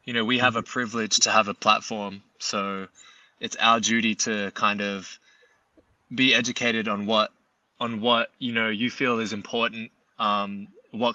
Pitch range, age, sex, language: 100-115 Hz, 20-39, male, Filipino